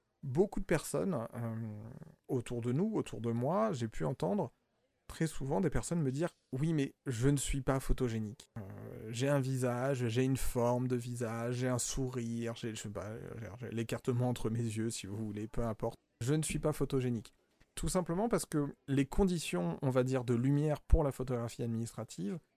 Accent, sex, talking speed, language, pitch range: French, male, 200 wpm, French, 115-140 Hz